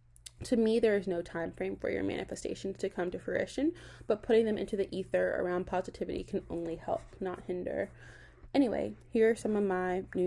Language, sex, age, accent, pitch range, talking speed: English, female, 20-39, American, 170-200 Hz, 200 wpm